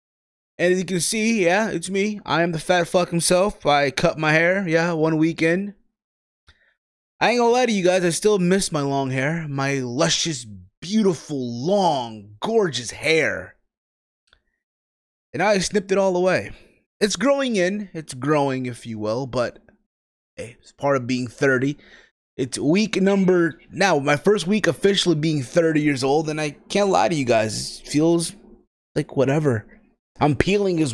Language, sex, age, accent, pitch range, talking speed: English, male, 20-39, American, 125-175 Hz, 170 wpm